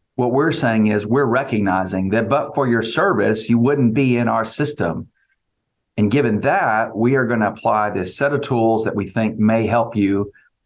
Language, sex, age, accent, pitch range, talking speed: English, male, 40-59, American, 105-130 Hz, 195 wpm